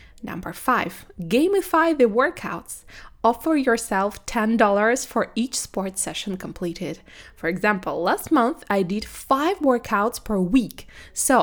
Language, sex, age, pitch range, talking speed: Russian, female, 20-39, 190-255 Hz, 130 wpm